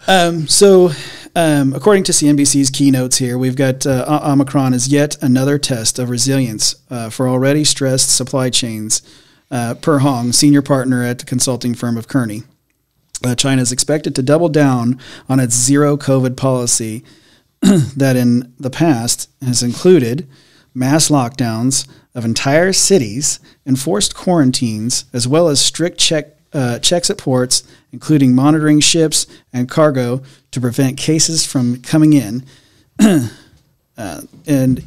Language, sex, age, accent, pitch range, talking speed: English, male, 40-59, American, 125-150 Hz, 140 wpm